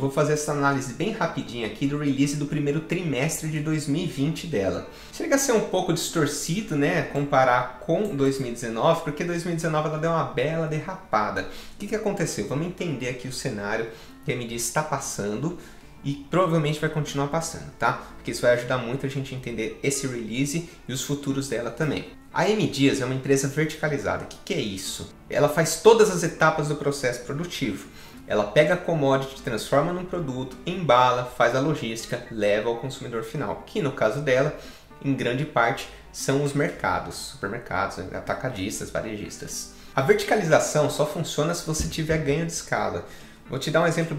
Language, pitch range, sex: English, 130-165 Hz, male